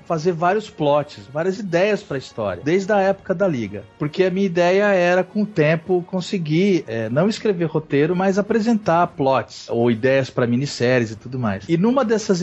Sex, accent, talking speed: male, Brazilian, 190 wpm